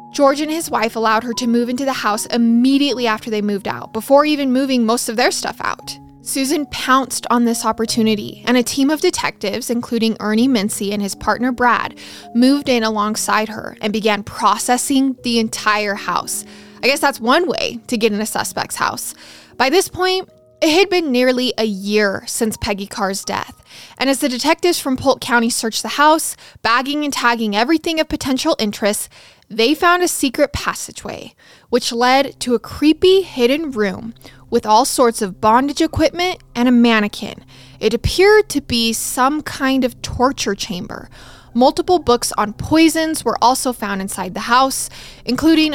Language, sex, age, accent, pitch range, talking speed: English, female, 20-39, American, 220-280 Hz, 175 wpm